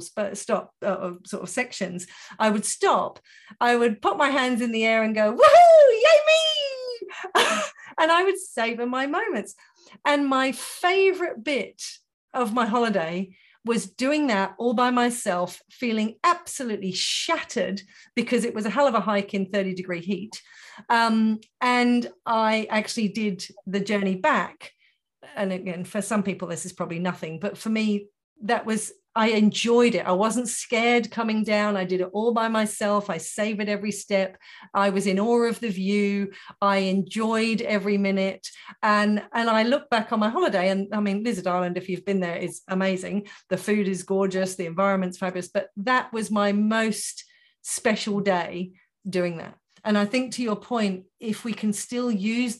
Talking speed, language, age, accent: 175 wpm, English, 40-59, British